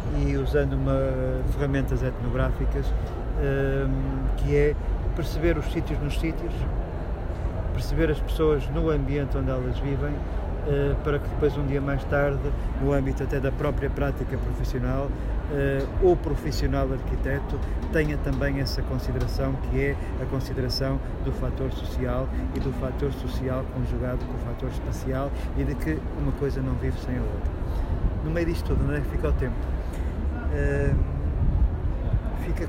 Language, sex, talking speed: Portuguese, male, 145 wpm